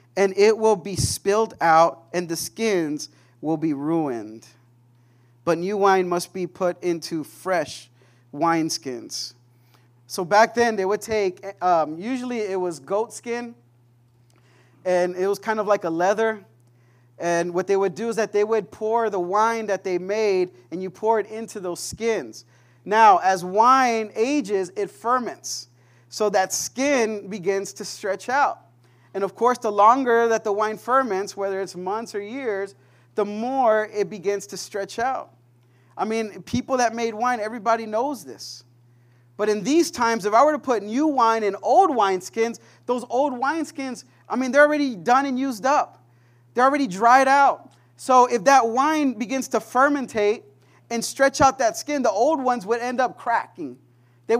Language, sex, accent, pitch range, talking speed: English, male, American, 160-240 Hz, 170 wpm